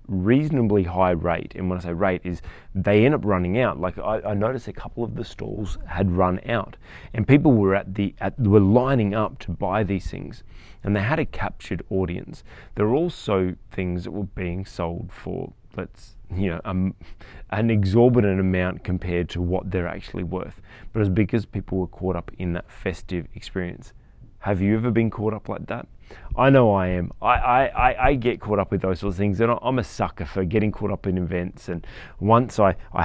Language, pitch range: English, 90-110 Hz